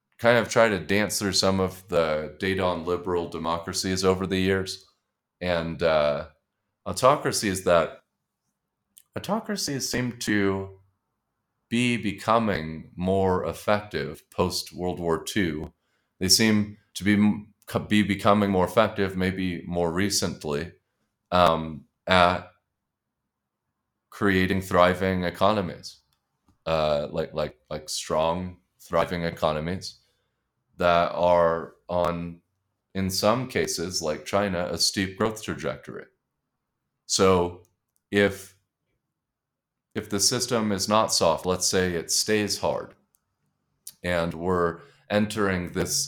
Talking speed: 110 wpm